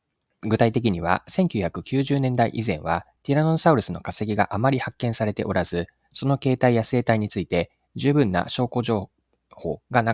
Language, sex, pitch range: Japanese, male, 90-135 Hz